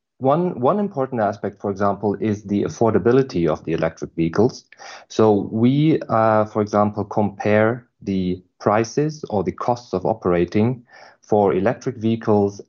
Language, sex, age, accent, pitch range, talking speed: English, male, 40-59, German, 100-125 Hz, 135 wpm